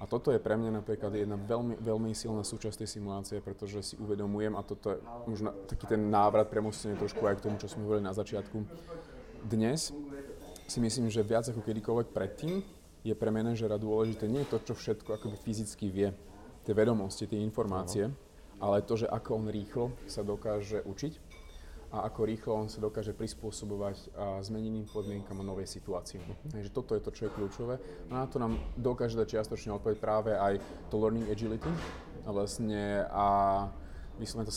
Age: 30-49